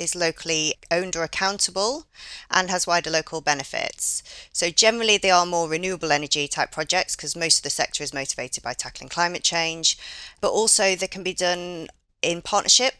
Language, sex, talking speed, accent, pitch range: English, female, 175 wpm, British, 140-175 Hz